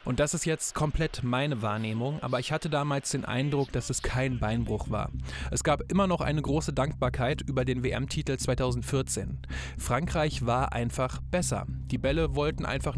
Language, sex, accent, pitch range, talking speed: German, male, German, 115-140 Hz, 170 wpm